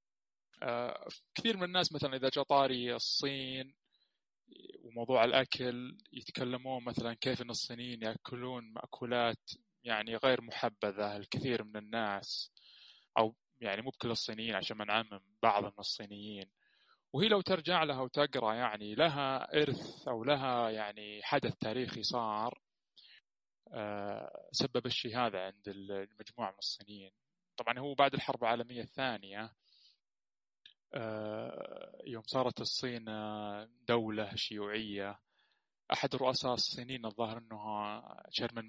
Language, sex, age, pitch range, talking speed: Arabic, male, 20-39, 110-135 Hz, 110 wpm